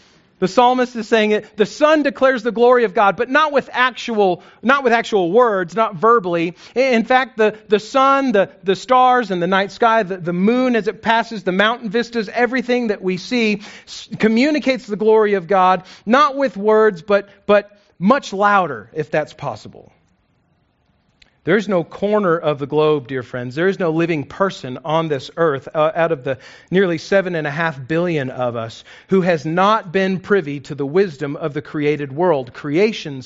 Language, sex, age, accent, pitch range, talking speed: English, male, 40-59, American, 165-230 Hz, 190 wpm